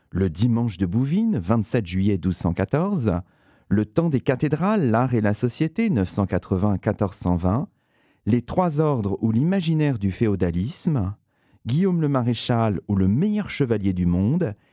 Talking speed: 130 wpm